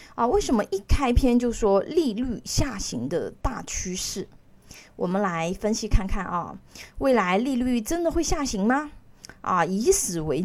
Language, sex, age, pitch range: Chinese, female, 20-39, 185-255 Hz